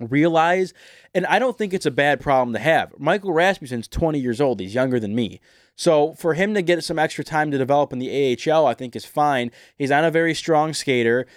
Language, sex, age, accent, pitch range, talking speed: English, male, 20-39, American, 130-160 Hz, 225 wpm